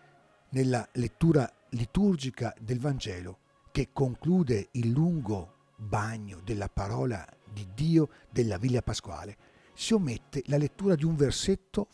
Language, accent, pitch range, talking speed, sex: Italian, native, 105-145 Hz, 120 wpm, male